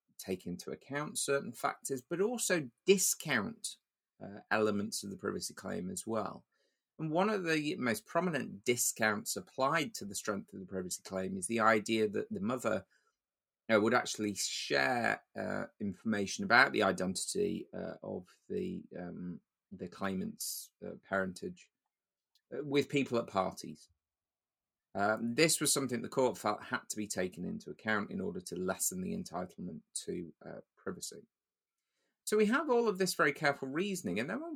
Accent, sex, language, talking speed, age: British, male, English, 155 wpm, 30-49